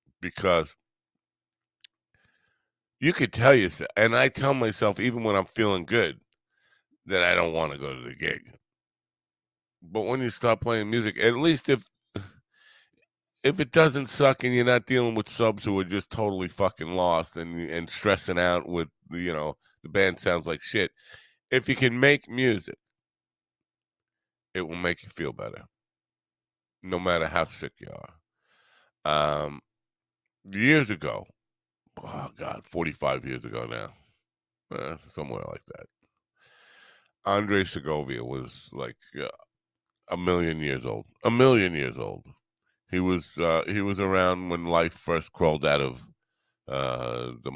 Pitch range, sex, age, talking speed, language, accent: 85-115 Hz, male, 50-69, 150 wpm, English, American